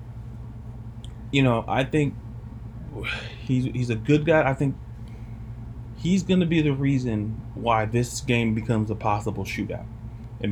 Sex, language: male, English